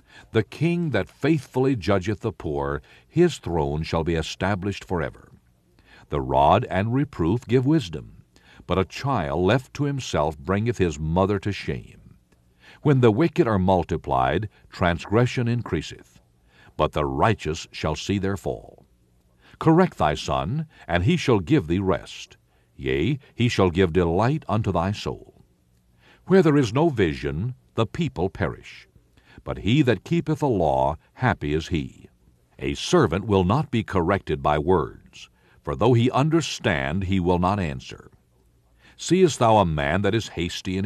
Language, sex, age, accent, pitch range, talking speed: English, male, 60-79, American, 75-120 Hz, 150 wpm